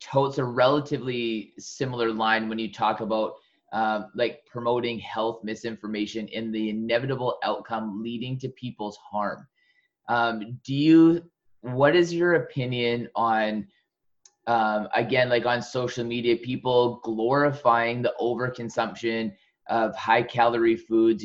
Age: 20-39